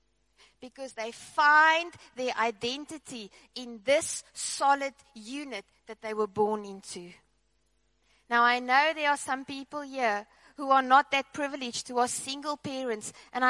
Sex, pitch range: female, 230-300 Hz